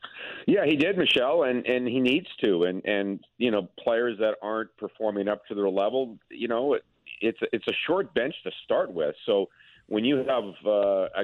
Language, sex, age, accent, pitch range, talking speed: English, male, 50-69, American, 100-120 Hz, 210 wpm